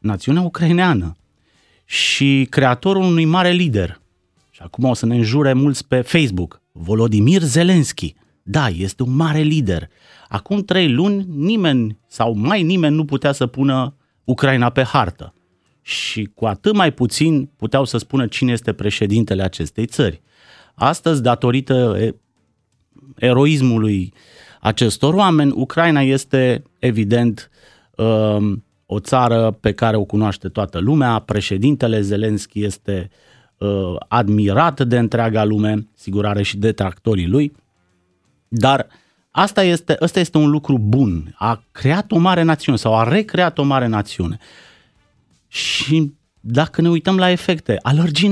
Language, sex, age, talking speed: Romanian, male, 30-49, 135 wpm